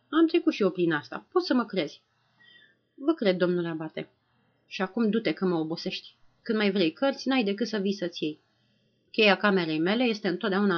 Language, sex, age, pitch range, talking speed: Romanian, female, 30-49, 175-230 Hz, 190 wpm